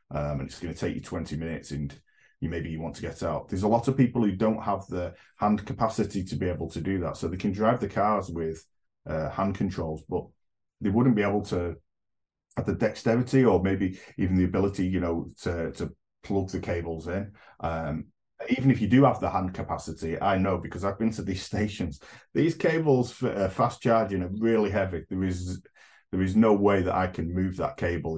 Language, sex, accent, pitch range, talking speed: English, male, British, 80-100 Hz, 220 wpm